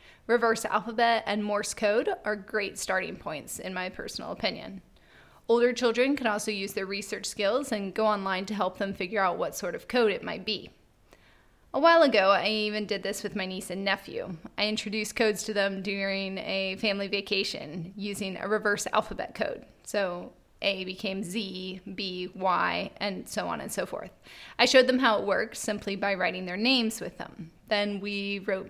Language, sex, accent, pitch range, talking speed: English, female, American, 195-220 Hz, 190 wpm